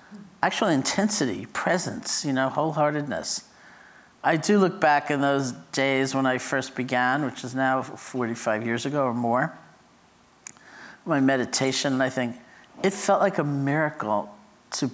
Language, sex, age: English, male, 50-69